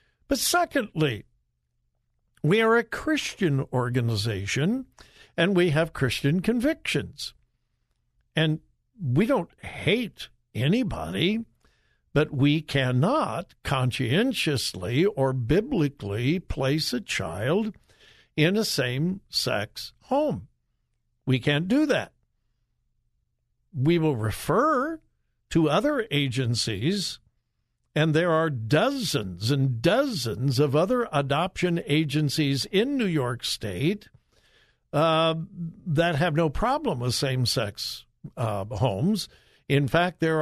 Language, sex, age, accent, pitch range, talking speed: English, male, 60-79, American, 130-200 Hz, 95 wpm